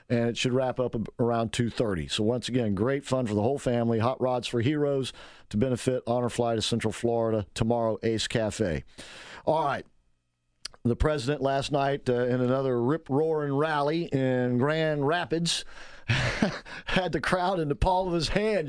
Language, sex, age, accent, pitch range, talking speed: English, male, 50-69, American, 120-160 Hz, 175 wpm